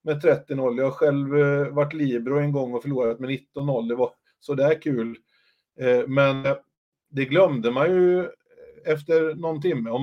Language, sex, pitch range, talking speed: Swedish, male, 125-150 Hz, 160 wpm